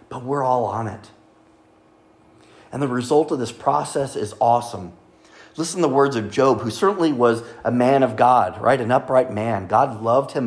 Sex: male